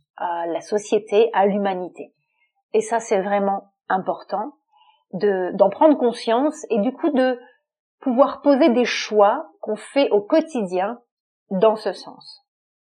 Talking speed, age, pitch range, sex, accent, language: 135 wpm, 30-49, 200-255 Hz, female, French, French